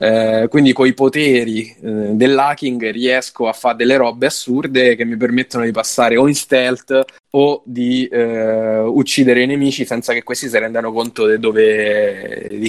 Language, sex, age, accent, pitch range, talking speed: Italian, male, 20-39, native, 115-135 Hz, 160 wpm